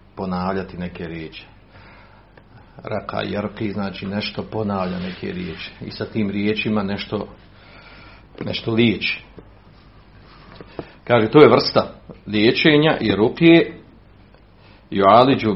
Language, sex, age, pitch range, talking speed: Croatian, male, 50-69, 100-130 Hz, 95 wpm